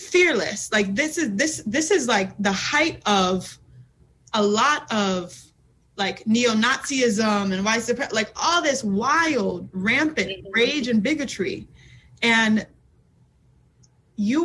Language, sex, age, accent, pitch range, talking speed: English, female, 20-39, American, 195-240 Hz, 115 wpm